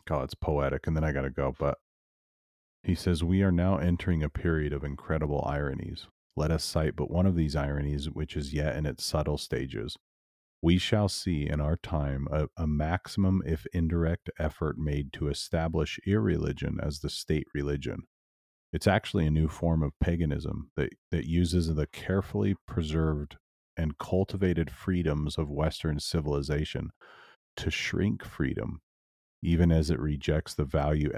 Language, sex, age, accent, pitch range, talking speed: English, male, 30-49, American, 75-85 Hz, 160 wpm